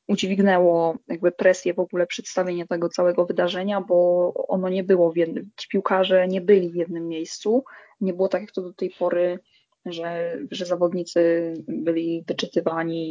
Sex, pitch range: female, 170-195 Hz